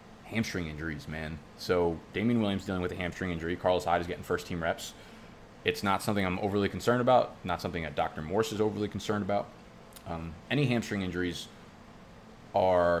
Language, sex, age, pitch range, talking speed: English, male, 20-39, 85-105 Hz, 180 wpm